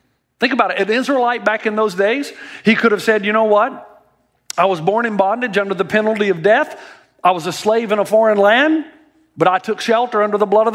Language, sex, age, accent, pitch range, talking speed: English, male, 50-69, American, 190-240 Hz, 235 wpm